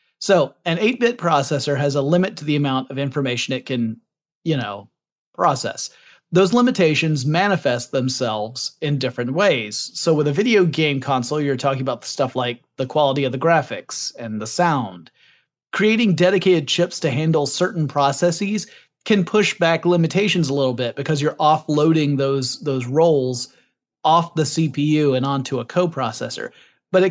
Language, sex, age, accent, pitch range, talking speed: English, male, 30-49, American, 135-170 Hz, 155 wpm